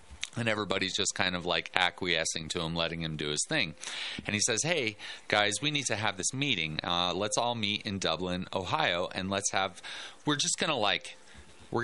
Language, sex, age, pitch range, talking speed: English, male, 30-49, 90-120 Hz, 205 wpm